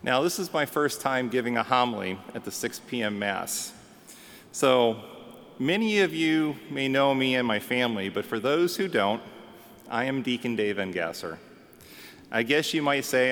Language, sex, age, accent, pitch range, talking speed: English, male, 30-49, American, 115-145 Hz, 175 wpm